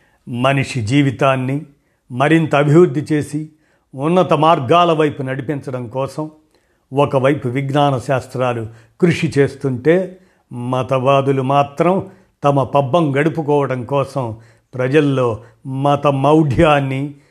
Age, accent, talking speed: 50-69, native, 85 wpm